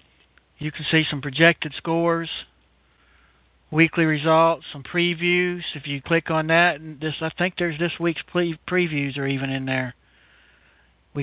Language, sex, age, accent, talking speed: English, male, 60-79, American, 155 wpm